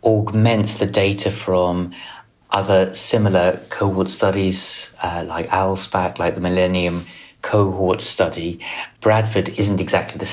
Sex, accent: male, British